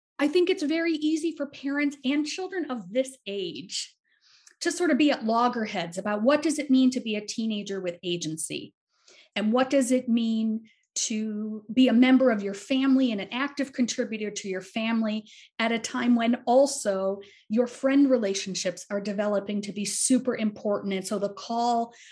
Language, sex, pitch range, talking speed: English, female, 205-285 Hz, 180 wpm